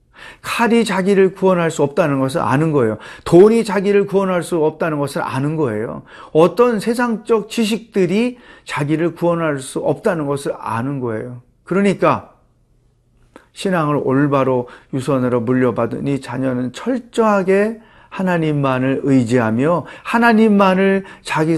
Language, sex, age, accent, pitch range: Korean, male, 40-59, native, 130-190 Hz